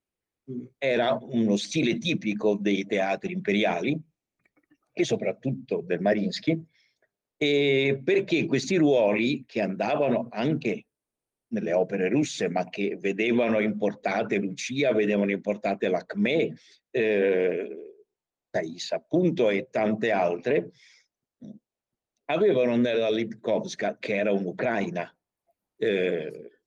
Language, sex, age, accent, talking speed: Italian, male, 60-79, native, 95 wpm